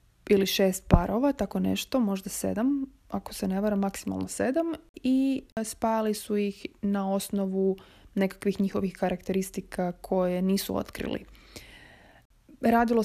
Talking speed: 120 wpm